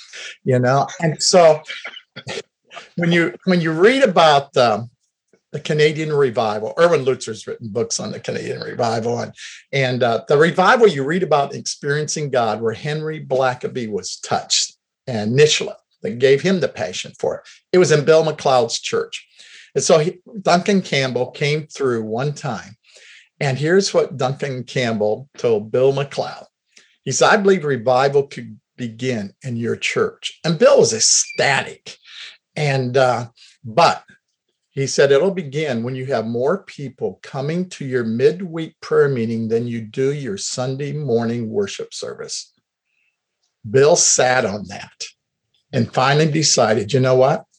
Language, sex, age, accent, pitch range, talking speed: English, male, 50-69, American, 125-175 Hz, 150 wpm